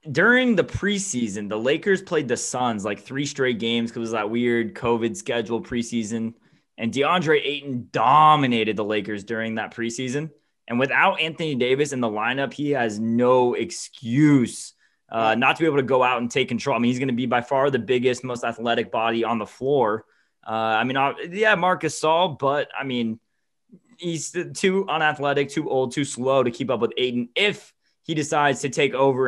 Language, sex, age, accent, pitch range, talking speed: English, male, 20-39, American, 115-145 Hz, 195 wpm